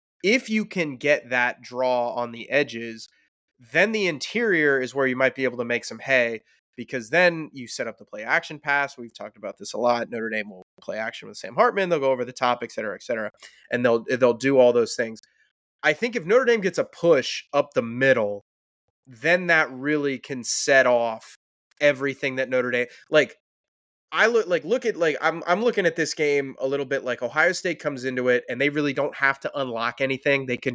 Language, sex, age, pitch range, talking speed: English, male, 20-39, 125-155 Hz, 220 wpm